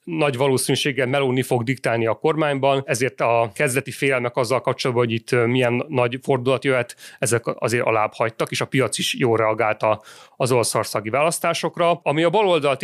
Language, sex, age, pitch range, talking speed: Hungarian, male, 30-49, 120-145 Hz, 165 wpm